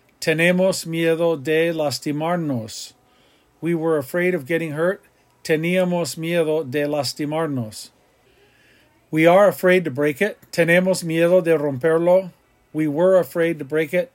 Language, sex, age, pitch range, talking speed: English, male, 50-69, 155-185 Hz, 125 wpm